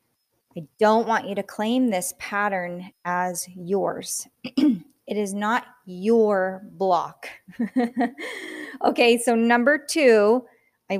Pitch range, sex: 175-235 Hz, female